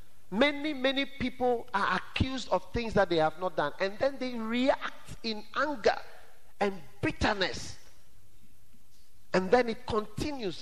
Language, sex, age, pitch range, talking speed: English, male, 40-59, 140-210 Hz, 135 wpm